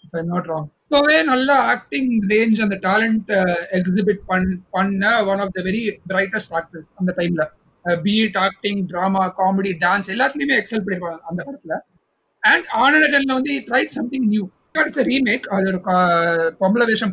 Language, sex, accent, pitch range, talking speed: Tamil, male, native, 185-245 Hz, 195 wpm